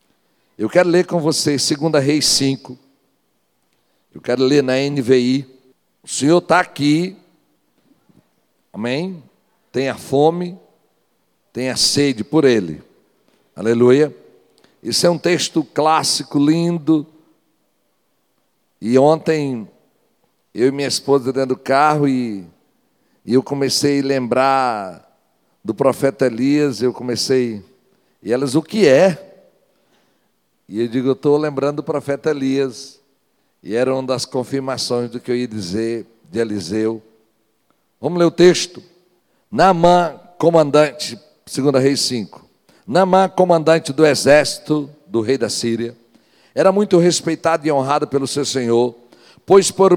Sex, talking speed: male, 125 wpm